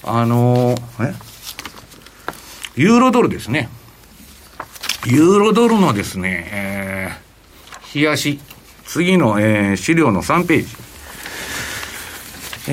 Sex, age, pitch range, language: male, 60-79, 115-165 Hz, Japanese